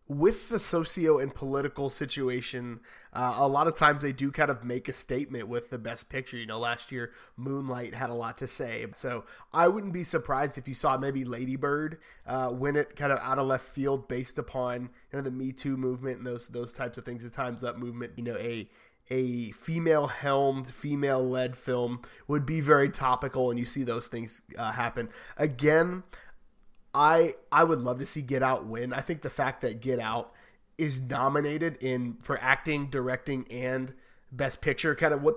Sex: male